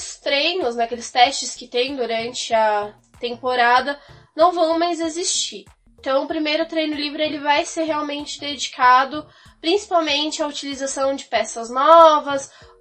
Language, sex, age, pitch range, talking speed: Portuguese, female, 10-29, 245-295 Hz, 140 wpm